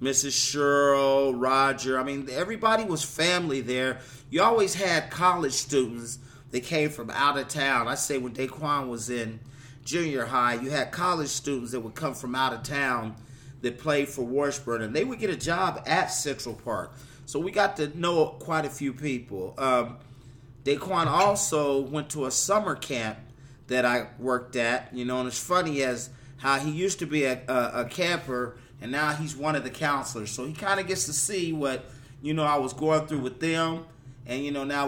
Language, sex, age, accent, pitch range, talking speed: English, male, 40-59, American, 125-150 Hz, 200 wpm